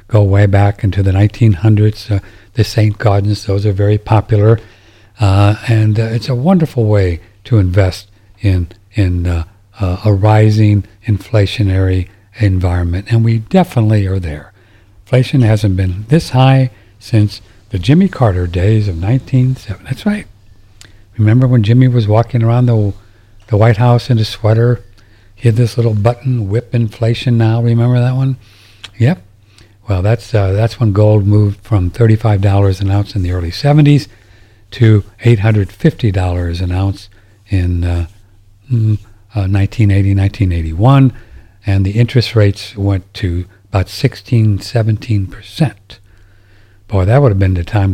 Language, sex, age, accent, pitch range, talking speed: English, male, 60-79, American, 100-115 Hz, 140 wpm